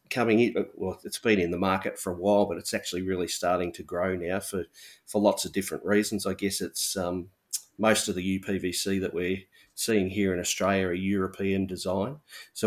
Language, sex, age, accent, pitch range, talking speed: English, male, 30-49, Australian, 95-110 Hz, 200 wpm